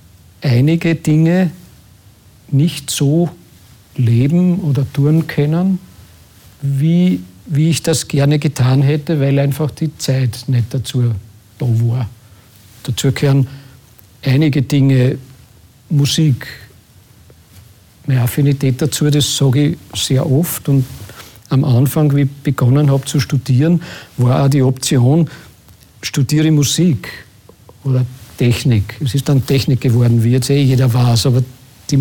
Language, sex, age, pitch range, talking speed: German, male, 50-69, 120-150 Hz, 120 wpm